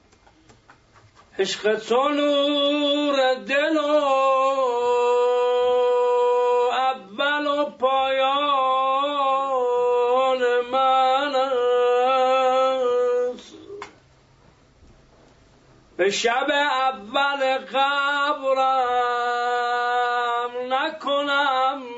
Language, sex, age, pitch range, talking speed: Persian, male, 50-69, 240-280 Hz, 35 wpm